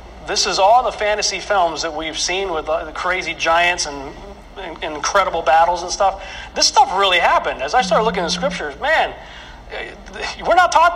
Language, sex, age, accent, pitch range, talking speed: English, male, 40-59, American, 160-200 Hz, 180 wpm